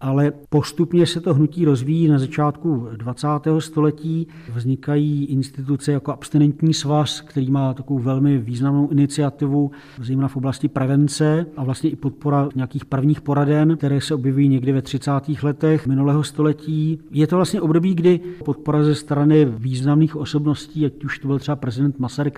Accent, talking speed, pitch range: native, 155 wpm, 135-150 Hz